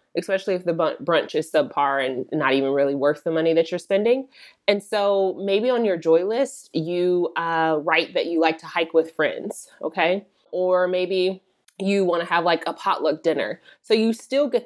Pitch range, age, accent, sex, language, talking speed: 160-200 Hz, 20-39, American, female, English, 195 wpm